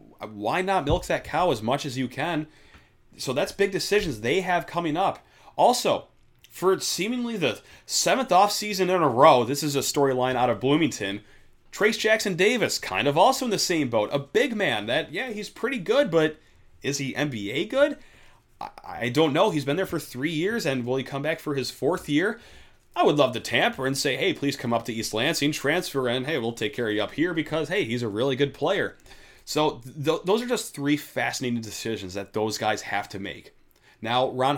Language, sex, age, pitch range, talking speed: English, male, 30-49, 115-150 Hz, 210 wpm